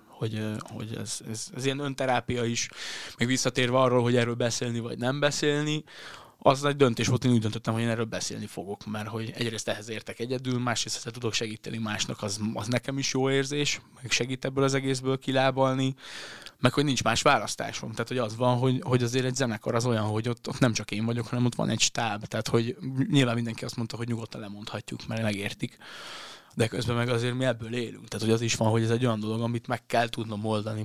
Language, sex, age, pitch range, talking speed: Hungarian, male, 20-39, 110-125 Hz, 220 wpm